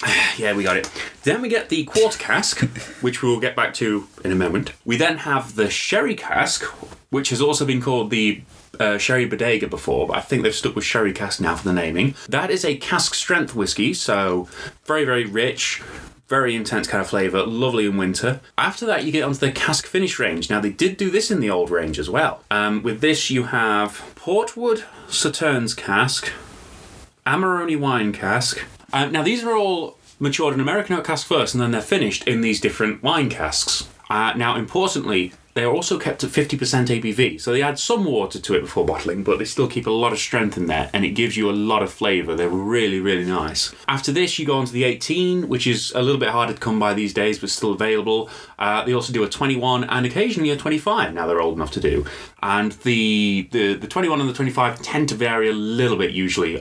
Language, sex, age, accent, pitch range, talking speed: English, male, 20-39, British, 105-140 Hz, 220 wpm